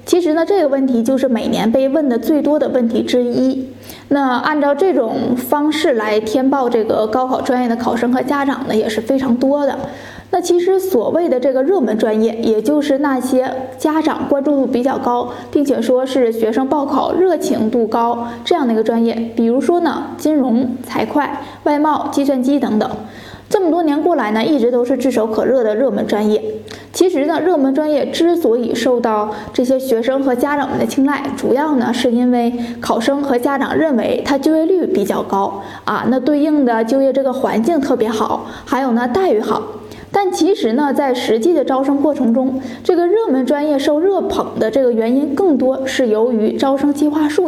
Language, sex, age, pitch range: Chinese, female, 20-39, 240-300 Hz